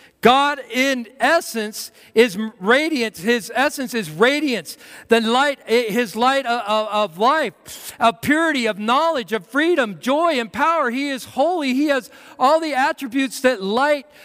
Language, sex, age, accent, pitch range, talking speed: English, male, 40-59, American, 195-260 Hz, 145 wpm